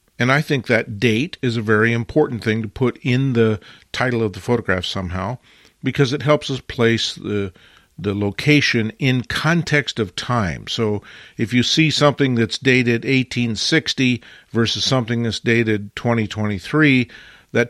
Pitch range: 110-135 Hz